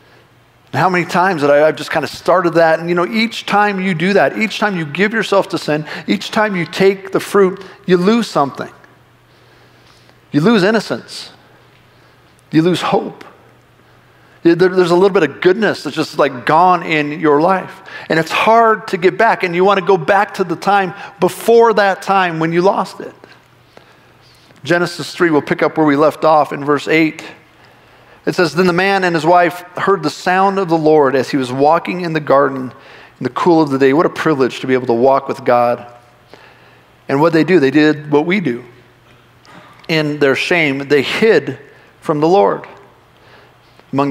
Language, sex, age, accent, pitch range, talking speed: English, male, 40-59, American, 150-190 Hz, 195 wpm